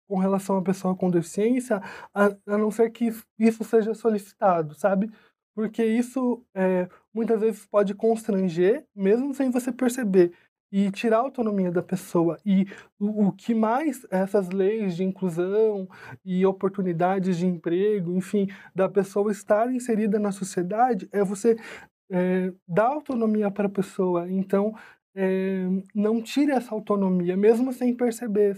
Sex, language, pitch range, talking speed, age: male, Portuguese, 185-215 Hz, 140 wpm, 20-39